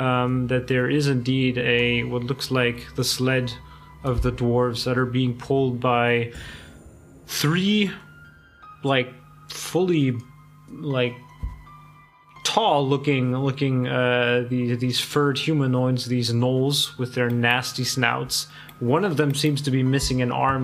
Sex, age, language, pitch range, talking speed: male, 30-49, English, 125-140 Hz, 135 wpm